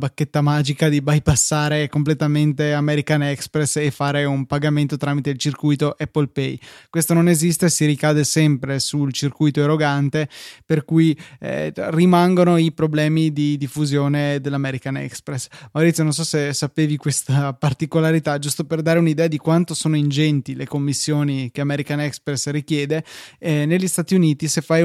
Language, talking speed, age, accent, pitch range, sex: Italian, 150 wpm, 20-39, native, 140-160 Hz, male